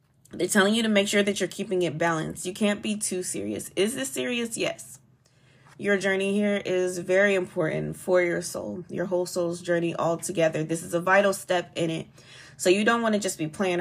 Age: 20-39